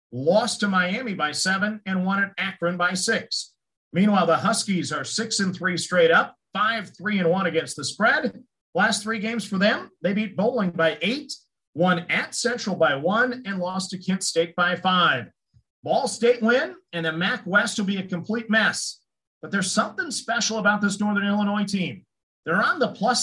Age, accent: 40-59, American